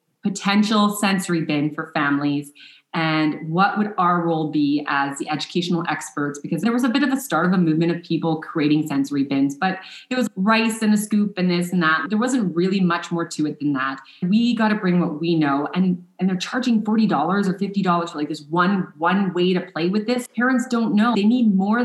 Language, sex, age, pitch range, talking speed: English, female, 30-49, 160-210 Hz, 225 wpm